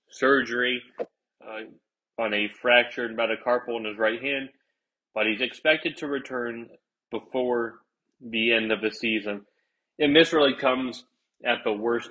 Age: 30-49